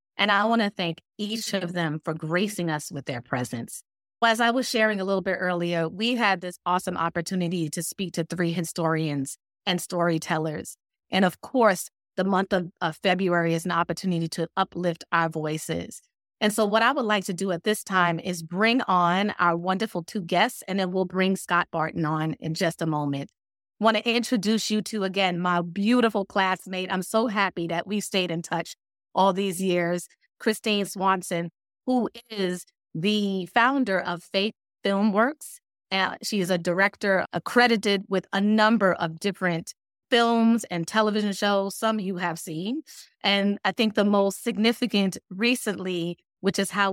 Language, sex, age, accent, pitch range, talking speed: English, female, 30-49, American, 175-215 Hz, 175 wpm